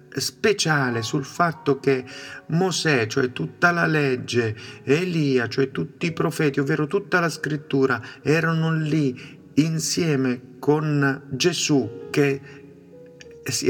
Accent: native